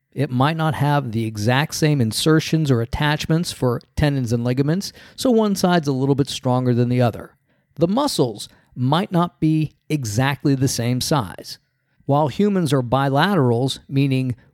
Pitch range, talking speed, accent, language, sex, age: 125-155 Hz, 155 wpm, American, English, male, 50-69